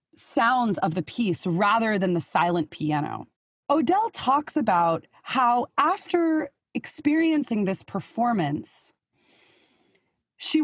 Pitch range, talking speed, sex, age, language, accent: 180-265 Hz, 100 wpm, female, 20-39, English, American